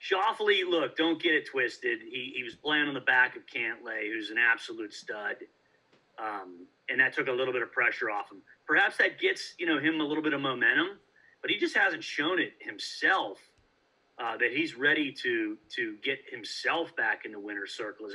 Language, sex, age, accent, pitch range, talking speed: English, male, 30-49, American, 315-405 Hz, 205 wpm